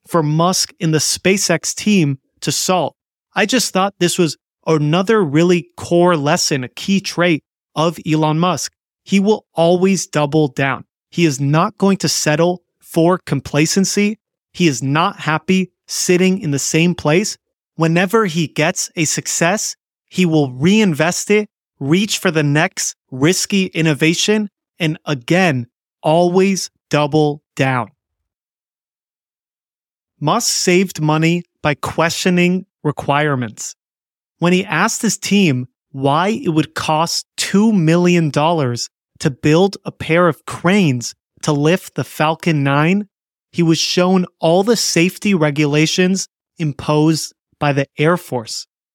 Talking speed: 130 wpm